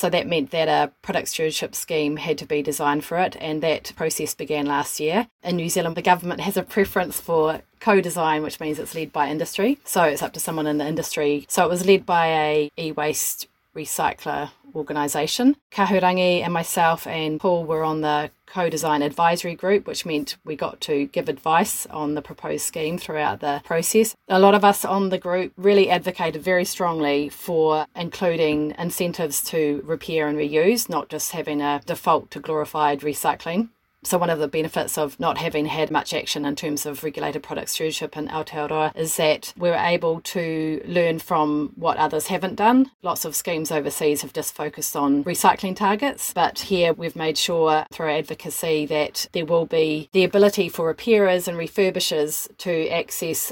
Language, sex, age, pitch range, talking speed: English, female, 30-49, 150-175 Hz, 185 wpm